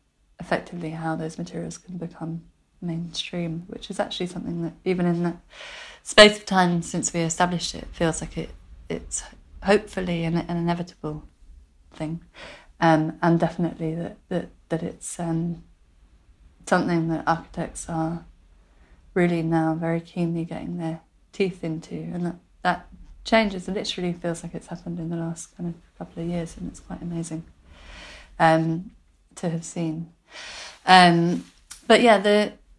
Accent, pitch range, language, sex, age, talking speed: British, 160-180 Hz, English, female, 30-49, 145 wpm